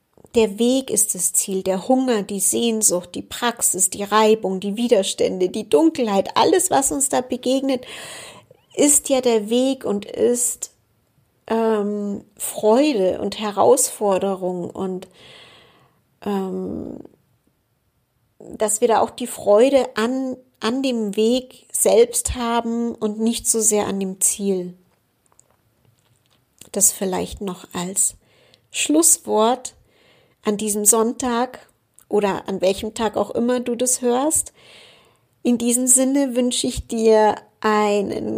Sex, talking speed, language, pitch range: female, 120 wpm, German, 205-260 Hz